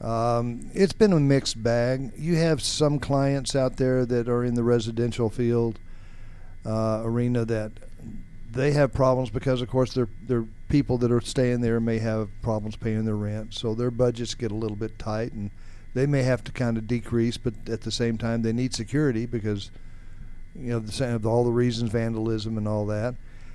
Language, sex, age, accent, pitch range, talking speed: English, male, 50-69, American, 105-125 Hz, 190 wpm